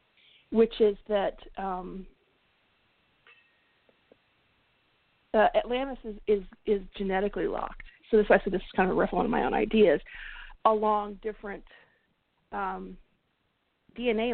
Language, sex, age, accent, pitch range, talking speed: English, female, 40-59, American, 200-230 Hz, 130 wpm